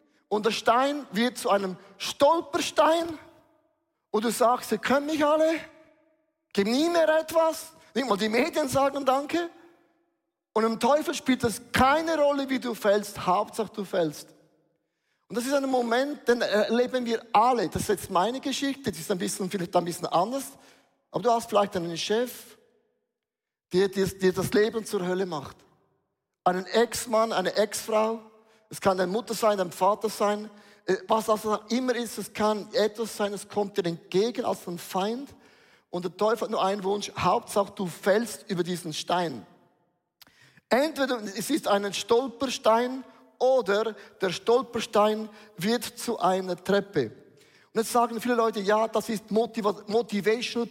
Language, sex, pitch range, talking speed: German, male, 200-250 Hz, 160 wpm